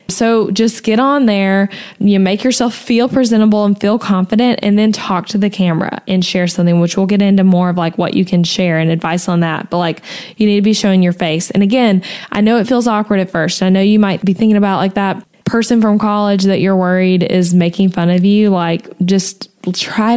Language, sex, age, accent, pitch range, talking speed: English, female, 10-29, American, 190-230 Hz, 230 wpm